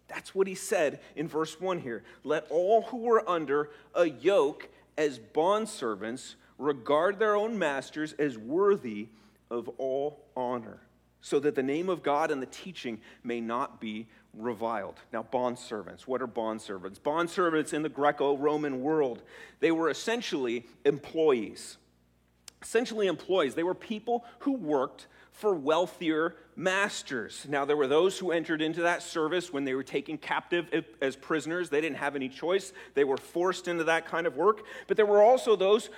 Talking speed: 160 wpm